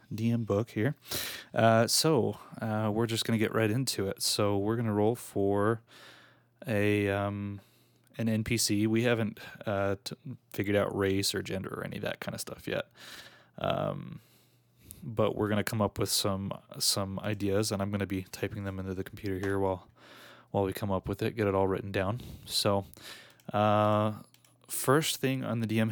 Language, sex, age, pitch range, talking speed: English, male, 20-39, 100-110 Hz, 180 wpm